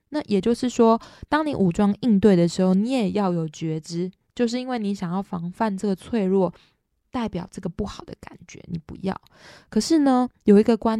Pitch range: 175-230 Hz